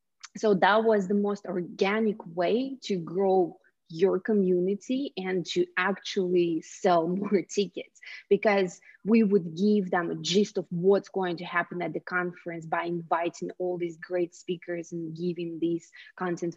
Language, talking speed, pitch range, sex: English, 150 wpm, 175-210 Hz, female